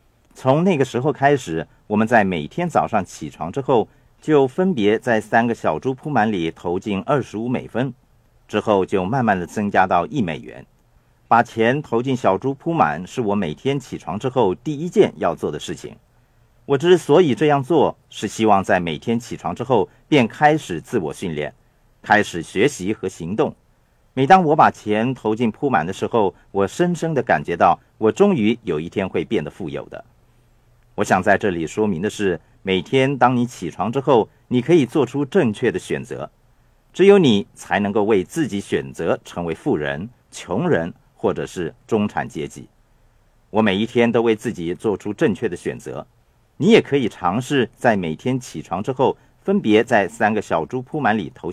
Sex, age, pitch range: male, 50-69, 110-145 Hz